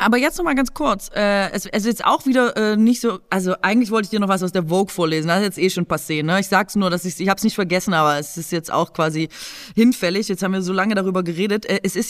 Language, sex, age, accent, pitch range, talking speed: German, female, 20-39, German, 175-215 Hz, 265 wpm